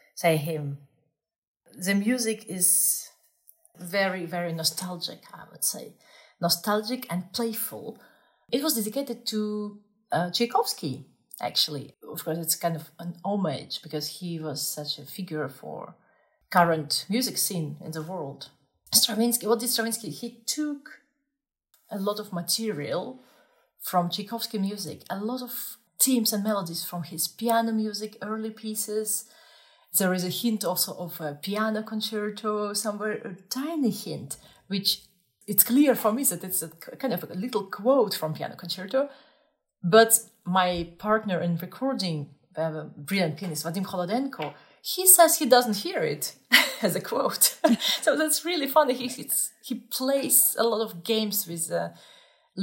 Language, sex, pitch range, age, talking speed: English, female, 175-235 Hz, 40-59, 145 wpm